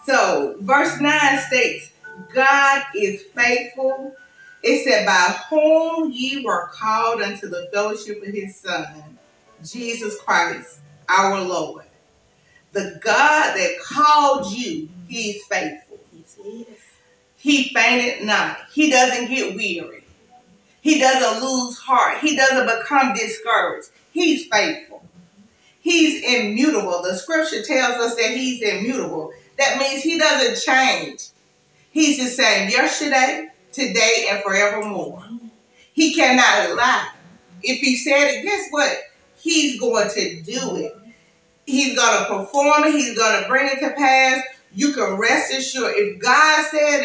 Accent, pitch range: American, 205-285 Hz